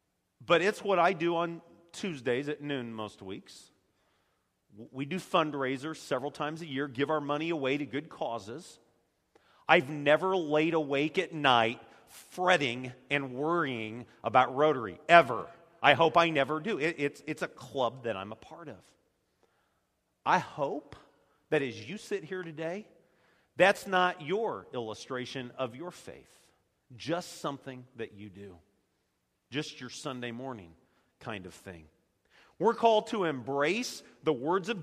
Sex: male